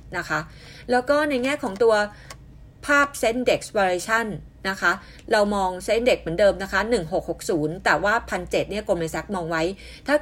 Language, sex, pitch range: Thai, female, 180-225 Hz